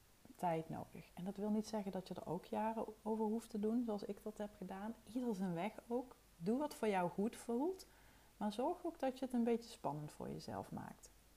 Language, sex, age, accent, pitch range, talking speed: Dutch, female, 30-49, Dutch, 175-235 Hz, 225 wpm